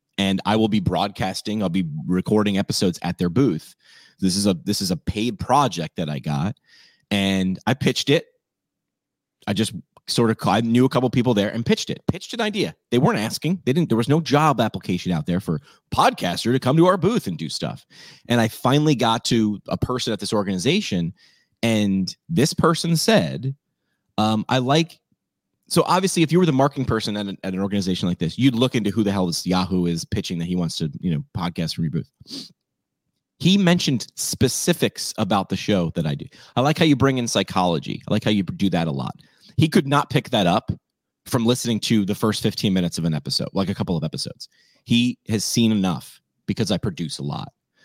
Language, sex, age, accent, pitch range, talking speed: English, male, 30-49, American, 95-130 Hz, 215 wpm